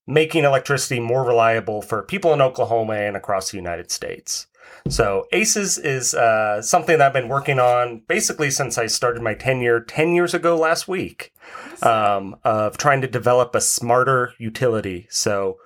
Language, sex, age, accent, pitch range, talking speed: English, male, 30-49, American, 115-150 Hz, 165 wpm